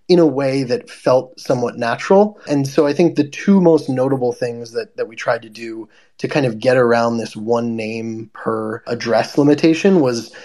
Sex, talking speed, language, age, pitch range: male, 195 wpm, English, 20-39, 115-150 Hz